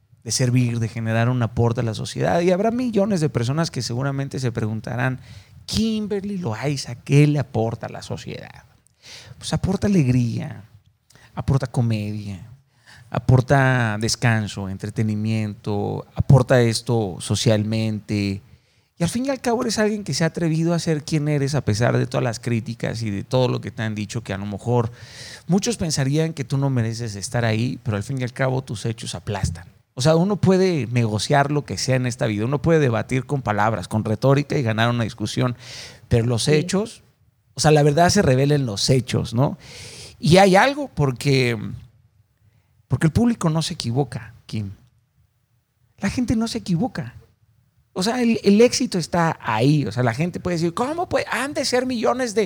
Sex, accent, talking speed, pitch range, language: male, Mexican, 180 wpm, 115-155 Hz, Spanish